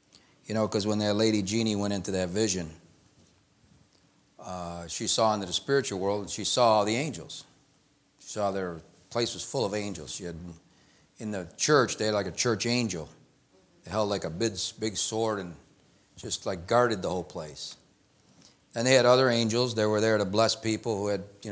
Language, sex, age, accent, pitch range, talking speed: English, male, 50-69, American, 95-115 Hz, 190 wpm